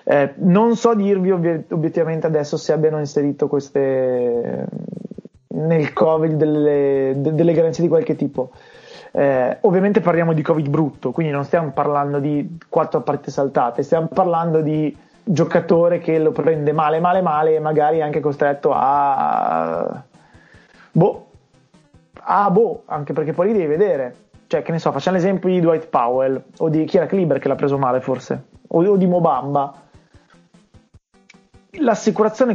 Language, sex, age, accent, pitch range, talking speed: Italian, male, 20-39, native, 140-180 Hz, 155 wpm